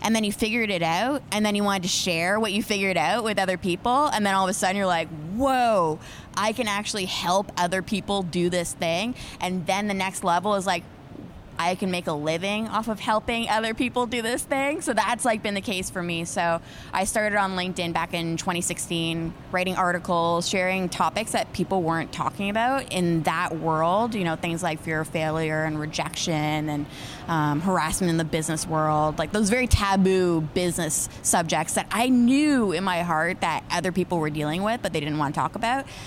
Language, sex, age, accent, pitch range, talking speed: English, female, 20-39, American, 165-220 Hz, 210 wpm